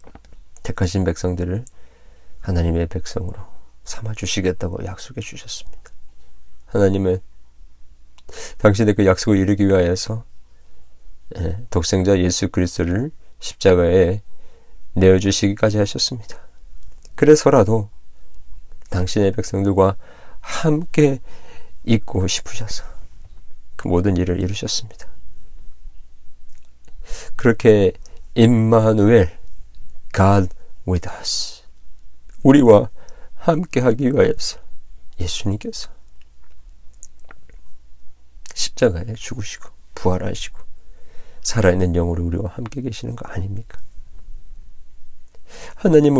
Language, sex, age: Korean, male, 40-59